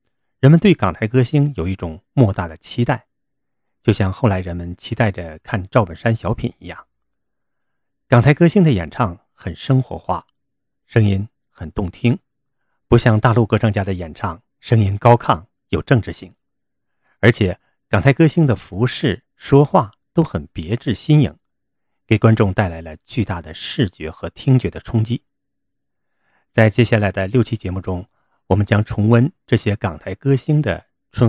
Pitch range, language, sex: 95-125 Hz, Chinese, male